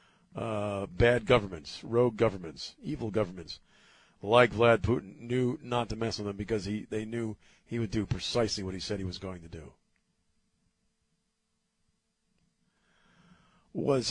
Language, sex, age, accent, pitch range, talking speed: English, male, 50-69, American, 100-130 Hz, 140 wpm